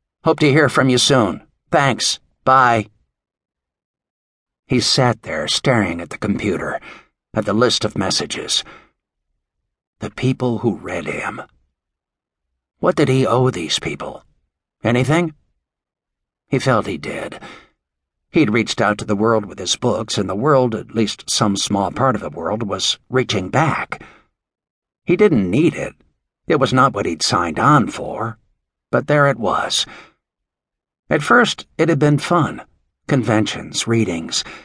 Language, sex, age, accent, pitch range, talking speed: English, male, 60-79, American, 110-145 Hz, 145 wpm